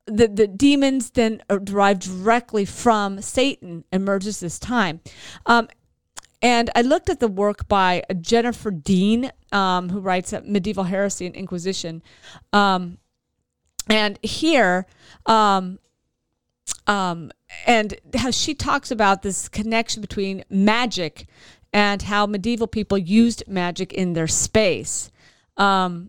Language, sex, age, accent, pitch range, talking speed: English, female, 40-59, American, 190-240 Hz, 120 wpm